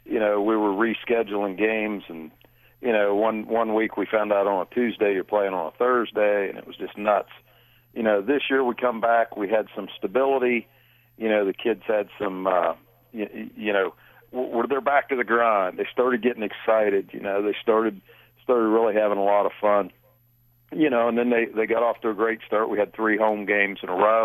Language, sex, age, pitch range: English, male, 40-59, 100-120 Hz